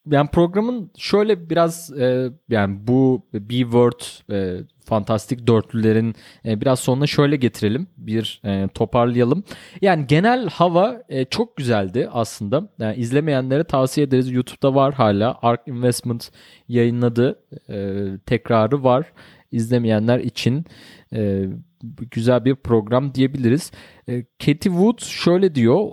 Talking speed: 120 wpm